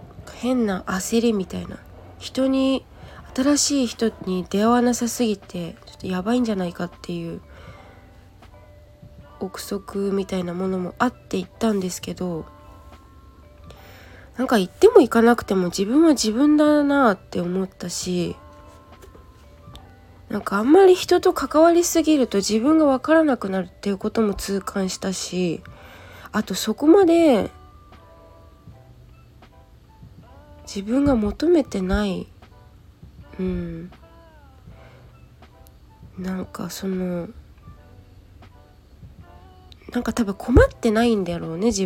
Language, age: Japanese, 20-39